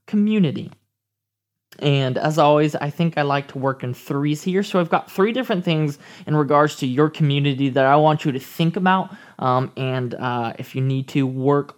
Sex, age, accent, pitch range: male, 20-39, American, 140-170 Hz